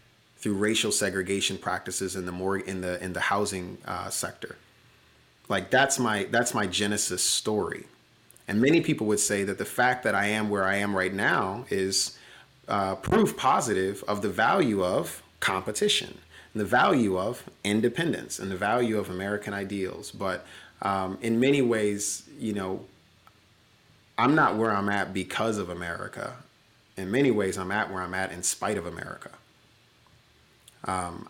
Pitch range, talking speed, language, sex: 95-115 Hz, 165 wpm, English, male